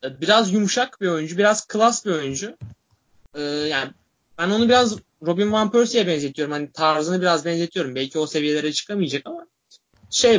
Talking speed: 155 wpm